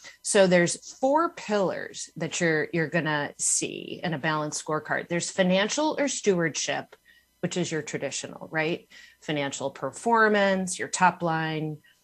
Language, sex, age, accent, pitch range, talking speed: English, female, 30-49, American, 150-195 Hz, 135 wpm